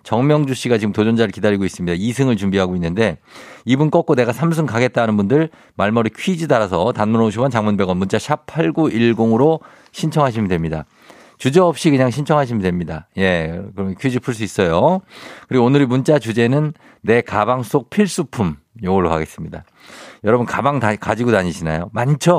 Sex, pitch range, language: male, 100-150 Hz, Korean